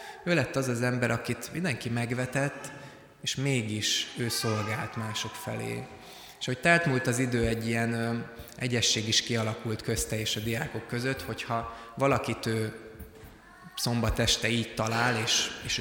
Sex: male